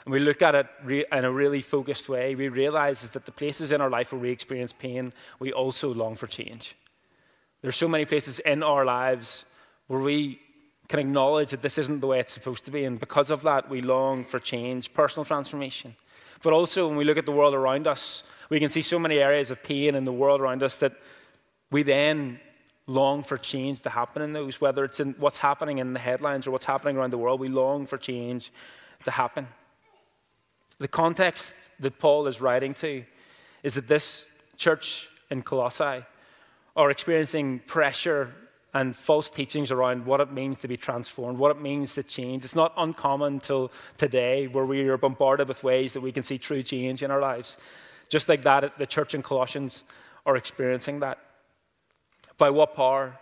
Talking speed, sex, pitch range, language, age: 200 wpm, male, 130-145 Hz, English, 20-39